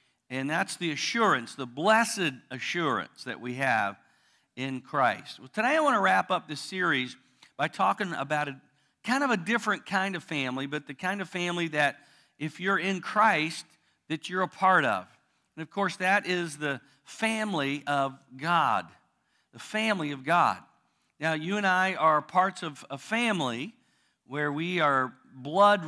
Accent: American